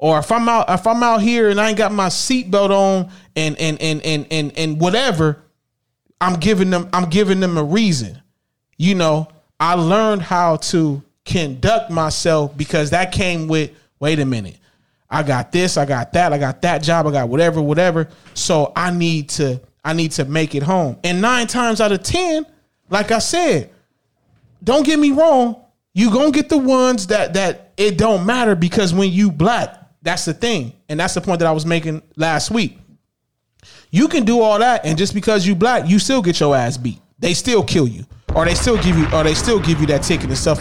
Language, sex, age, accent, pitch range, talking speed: English, male, 30-49, American, 155-205 Hz, 210 wpm